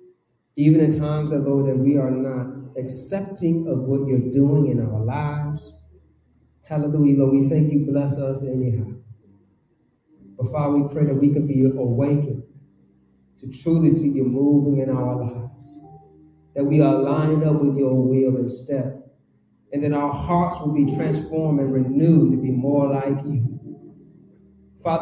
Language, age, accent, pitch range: English, 40-59, American, 135-165 Hz